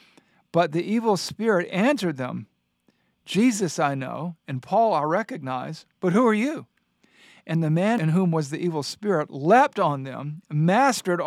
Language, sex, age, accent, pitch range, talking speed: English, male, 50-69, American, 145-185 Hz, 160 wpm